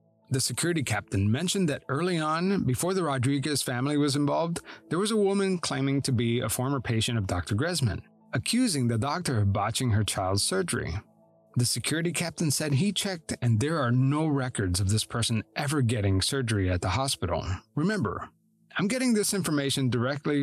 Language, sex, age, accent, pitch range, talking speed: English, male, 30-49, American, 115-165 Hz, 175 wpm